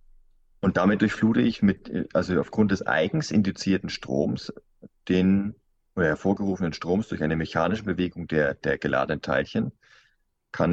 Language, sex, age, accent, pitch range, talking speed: German, male, 30-49, German, 90-110 Hz, 135 wpm